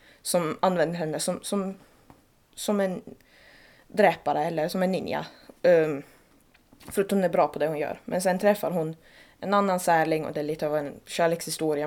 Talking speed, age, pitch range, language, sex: 175 wpm, 20-39, 150-180 Hz, Swedish, female